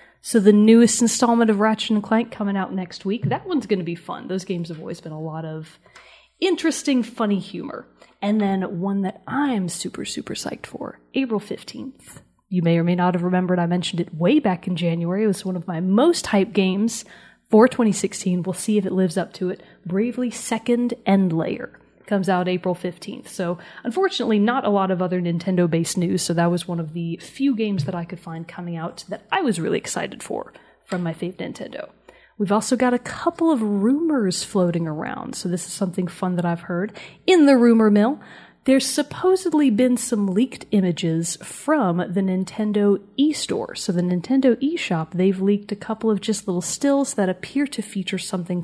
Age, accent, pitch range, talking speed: 30-49, American, 180-235 Hz, 195 wpm